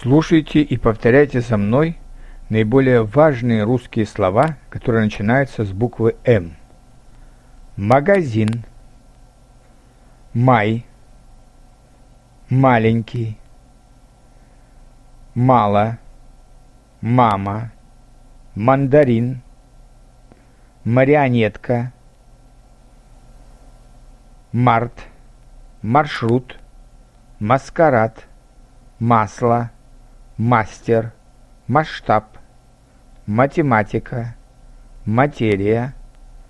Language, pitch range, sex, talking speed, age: Bulgarian, 120-125 Hz, male, 50 wpm, 50-69